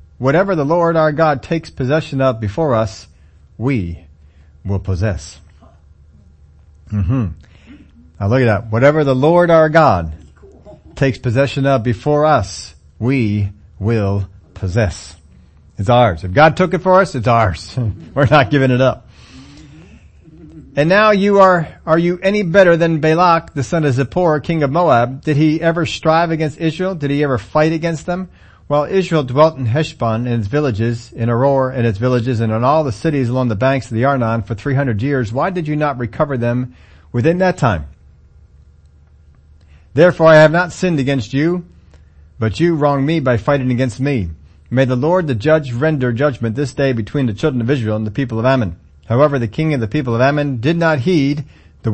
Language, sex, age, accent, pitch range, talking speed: English, male, 40-59, American, 100-155 Hz, 180 wpm